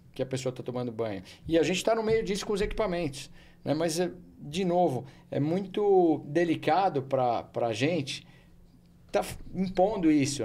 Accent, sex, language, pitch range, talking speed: Brazilian, male, Portuguese, 130-180 Hz, 170 wpm